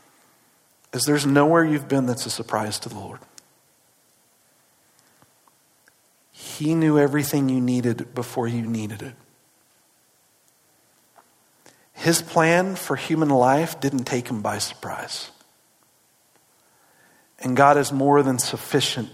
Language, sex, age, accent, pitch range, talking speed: English, male, 50-69, American, 125-150 Hz, 115 wpm